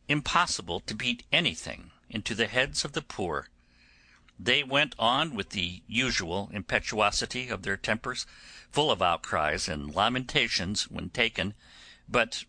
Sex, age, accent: male, 50-69, American